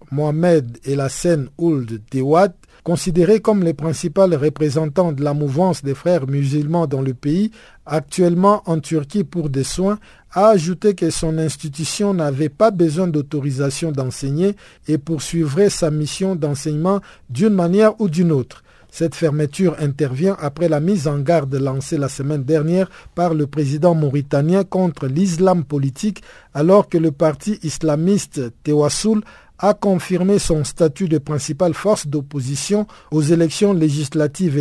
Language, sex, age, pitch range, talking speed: French, male, 50-69, 145-185 Hz, 140 wpm